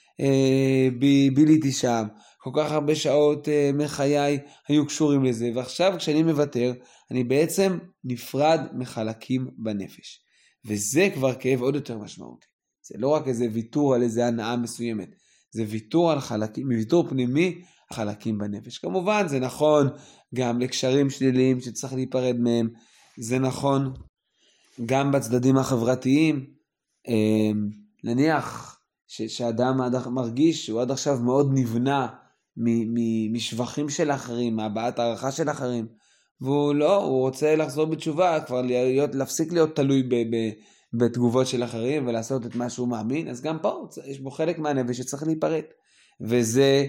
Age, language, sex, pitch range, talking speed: 20-39, Hebrew, male, 120-150 Hz, 135 wpm